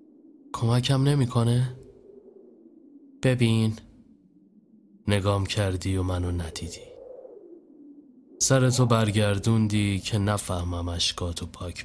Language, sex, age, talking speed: Persian, male, 30-49, 75 wpm